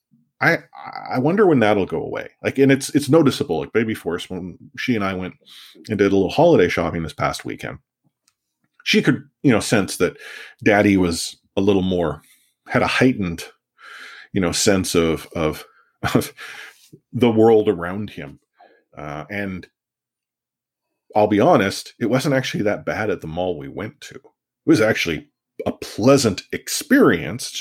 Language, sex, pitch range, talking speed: English, male, 85-120 Hz, 165 wpm